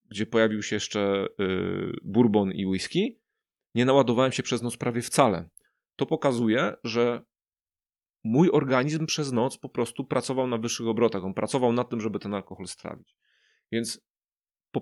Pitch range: 100-130 Hz